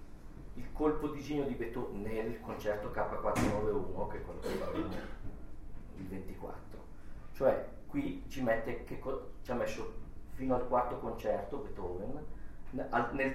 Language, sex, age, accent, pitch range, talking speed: Italian, male, 40-59, native, 100-155 Hz, 135 wpm